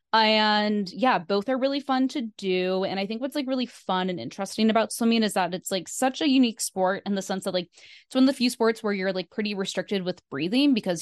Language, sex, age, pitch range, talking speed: English, female, 10-29, 180-220 Hz, 250 wpm